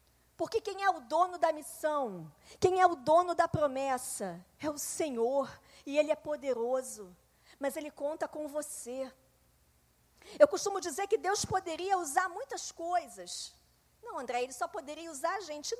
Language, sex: Portuguese, female